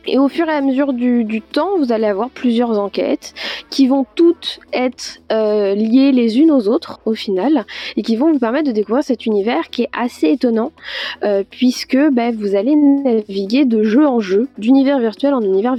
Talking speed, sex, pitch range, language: 200 wpm, female, 215-270 Hz, French